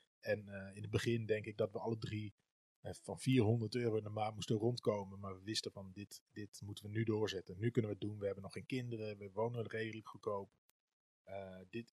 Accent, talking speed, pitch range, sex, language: Dutch, 230 wpm, 95-115 Hz, male, Dutch